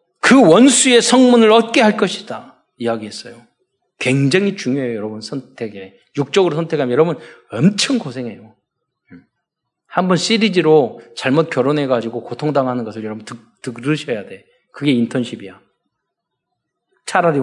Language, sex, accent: Korean, male, native